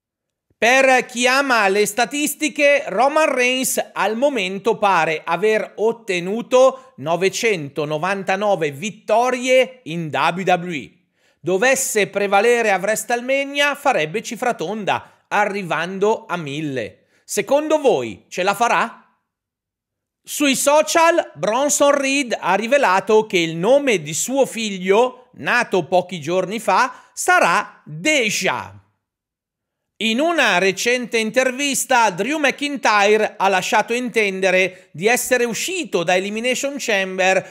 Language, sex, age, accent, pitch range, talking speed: Italian, male, 40-59, native, 185-255 Hz, 100 wpm